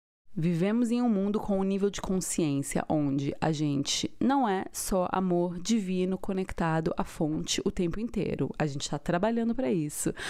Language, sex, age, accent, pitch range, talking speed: Portuguese, female, 20-39, Brazilian, 165-220 Hz, 170 wpm